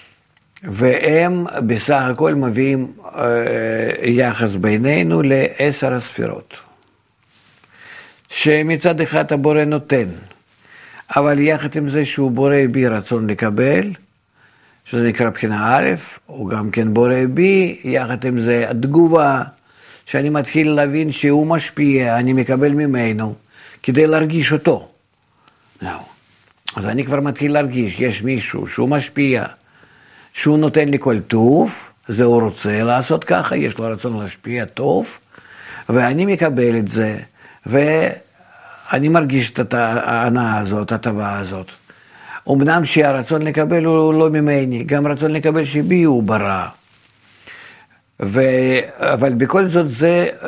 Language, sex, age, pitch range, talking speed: Hebrew, male, 50-69, 115-150 Hz, 120 wpm